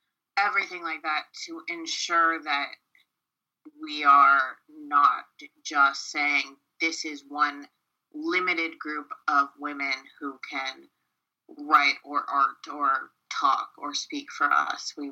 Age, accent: 30-49, American